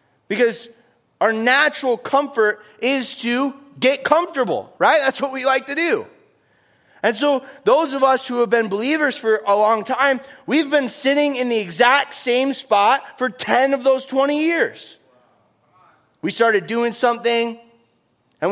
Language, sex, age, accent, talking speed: English, male, 30-49, American, 150 wpm